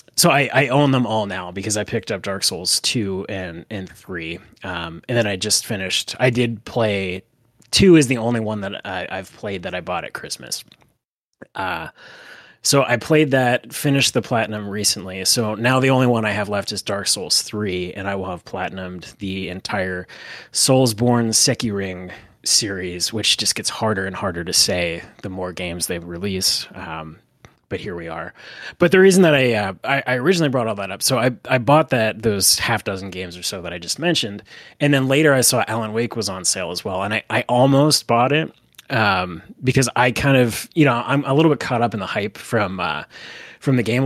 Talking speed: 215 wpm